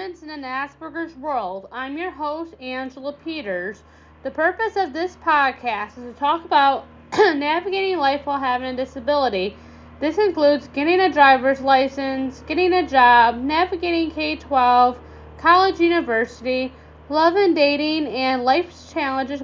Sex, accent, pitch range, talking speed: female, American, 245-315 Hz, 135 wpm